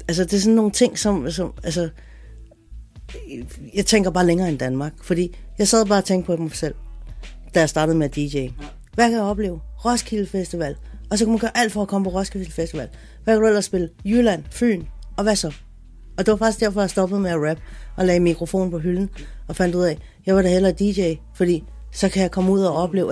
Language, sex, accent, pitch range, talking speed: Danish, female, native, 140-185 Hz, 235 wpm